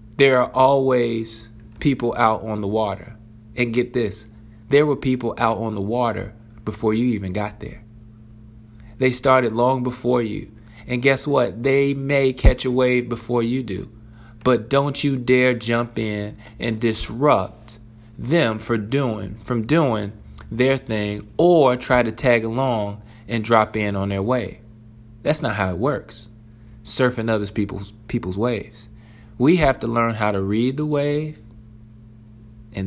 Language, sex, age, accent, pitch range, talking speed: English, male, 20-39, American, 105-125 Hz, 155 wpm